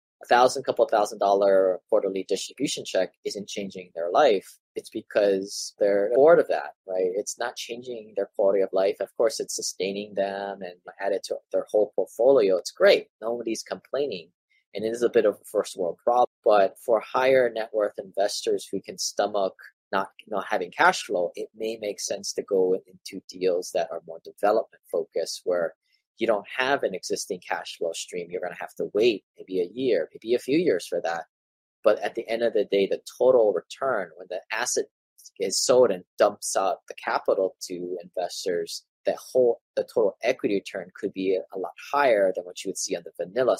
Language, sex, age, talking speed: English, male, 20-39, 200 wpm